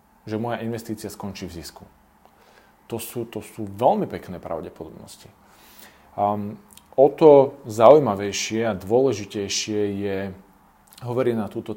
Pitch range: 100-115 Hz